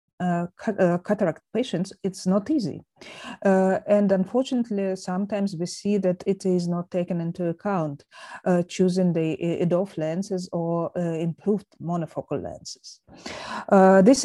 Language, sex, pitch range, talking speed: English, female, 175-220 Hz, 130 wpm